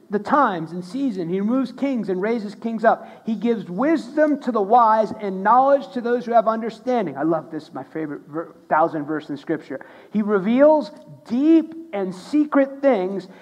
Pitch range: 185-250 Hz